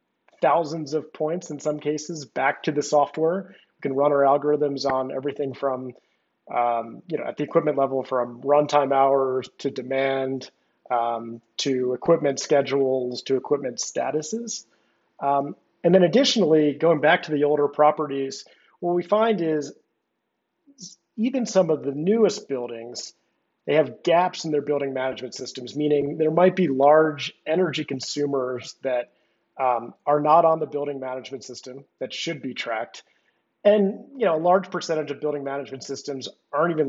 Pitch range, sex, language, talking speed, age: 135-165 Hz, male, English, 160 wpm, 30-49